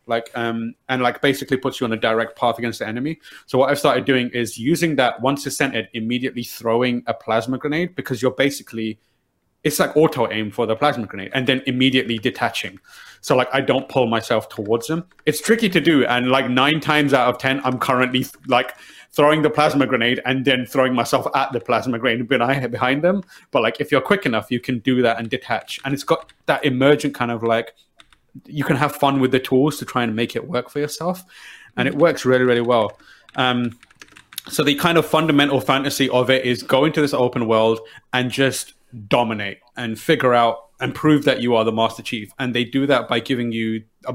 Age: 30-49